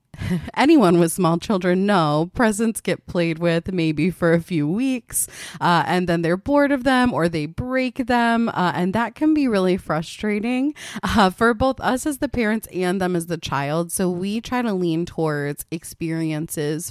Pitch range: 160-205 Hz